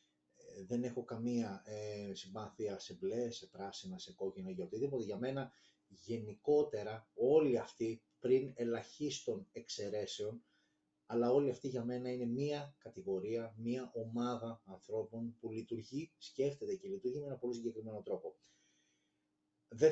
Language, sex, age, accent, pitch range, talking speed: Greek, male, 30-49, native, 115-175 Hz, 130 wpm